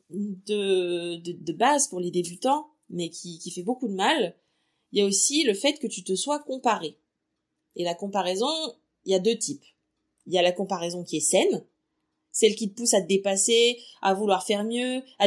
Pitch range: 190-250 Hz